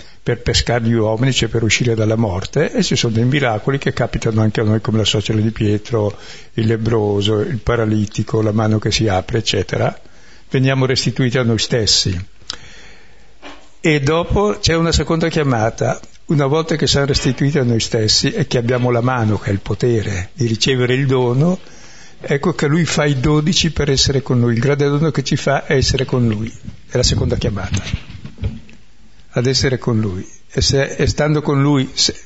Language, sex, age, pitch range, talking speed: Italian, male, 60-79, 110-145 Hz, 185 wpm